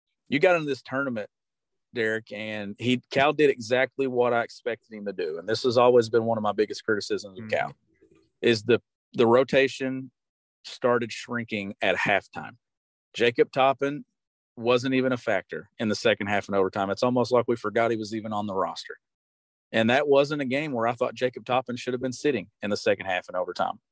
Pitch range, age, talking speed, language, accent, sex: 110-125 Hz, 40-59, 200 wpm, English, American, male